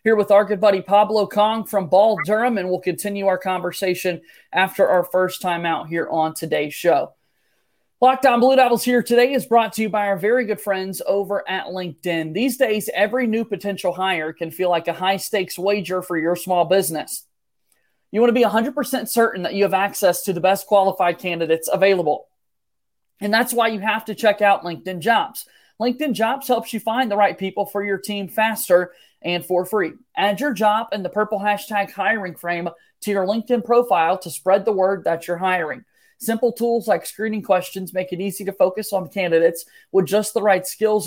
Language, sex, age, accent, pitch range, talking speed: English, male, 30-49, American, 180-225 Hz, 200 wpm